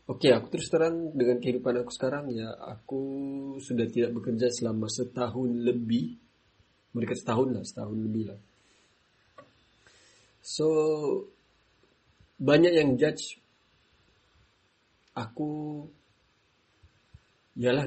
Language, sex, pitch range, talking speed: Malay, male, 110-130 Hz, 90 wpm